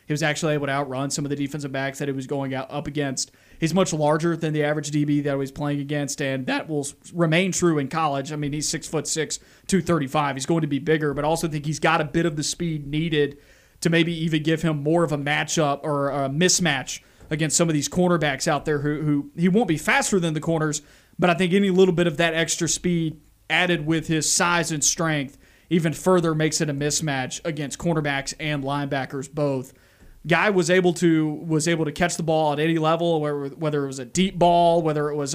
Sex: male